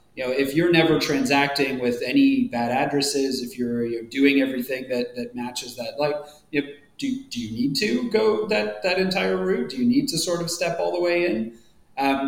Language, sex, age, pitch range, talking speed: English, male, 30-49, 120-155 Hz, 215 wpm